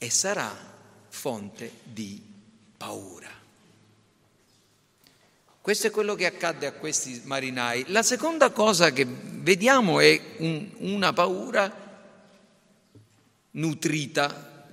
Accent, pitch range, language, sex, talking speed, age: native, 145-225 Hz, Italian, male, 90 wpm, 50-69